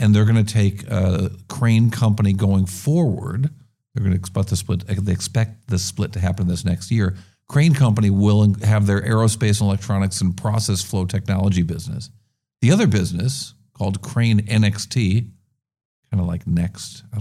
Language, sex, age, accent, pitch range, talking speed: English, male, 50-69, American, 95-115 Hz, 170 wpm